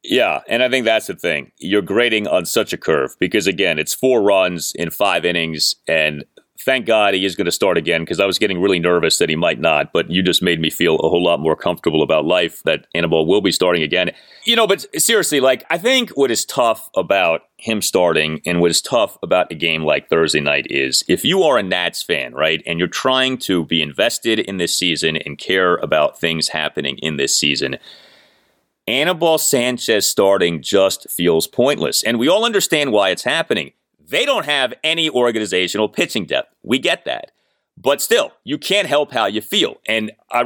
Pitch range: 85-140 Hz